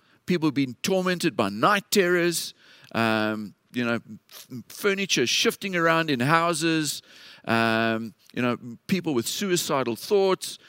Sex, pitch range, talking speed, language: male, 140-190 Hz, 125 wpm, English